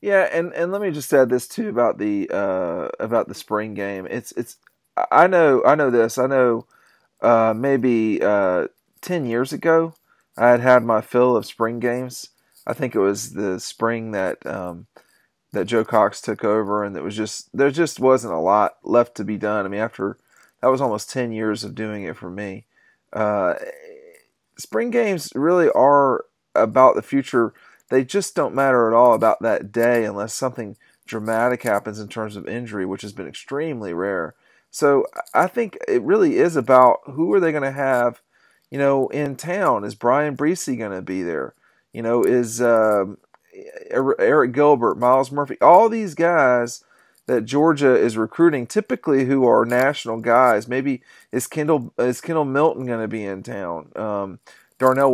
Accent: American